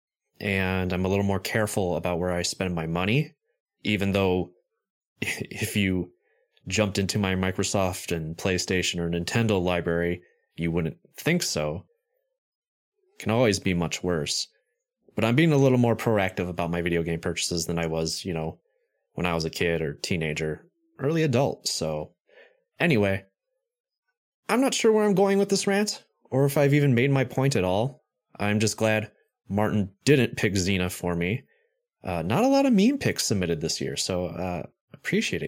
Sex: male